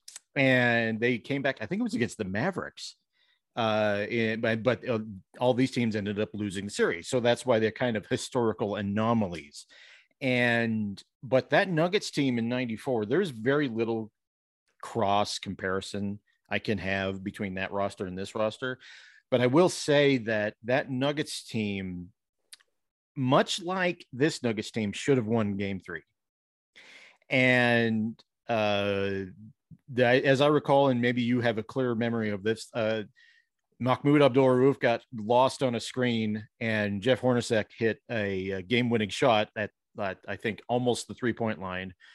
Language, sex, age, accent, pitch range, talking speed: English, male, 40-59, American, 105-130 Hz, 150 wpm